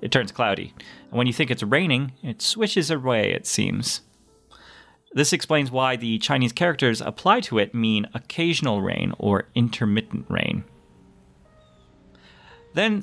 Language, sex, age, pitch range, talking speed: English, male, 30-49, 100-140 Hz, 140 wpm